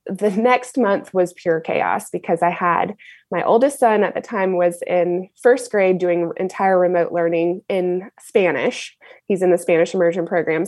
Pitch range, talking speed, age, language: 180-230 Hz, 175 wpm, 20-39, English